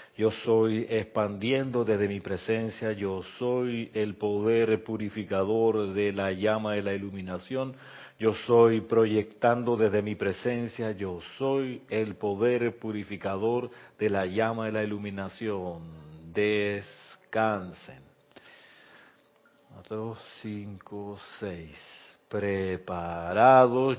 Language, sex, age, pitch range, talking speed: Spanish, male, 40-59, 100-115 Hz, 100 wpm